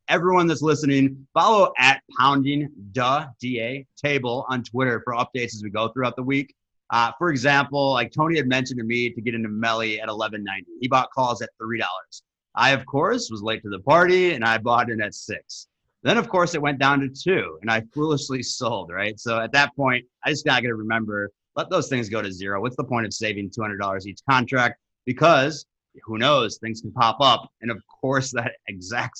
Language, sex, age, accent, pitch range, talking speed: English, male, 30-49, American, 110-135 Hz, 210 wpm